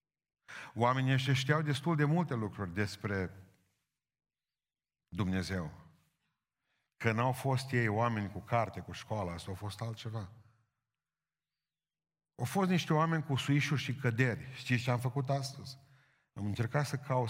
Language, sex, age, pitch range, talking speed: Romanian, male, 50-69, 90-125 Hz, 135 wpm